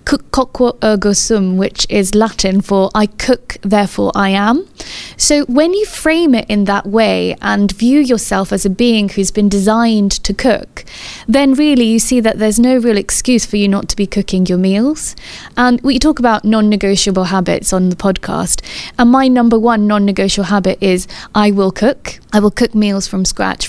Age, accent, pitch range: 20-39, British, 195-240 Hz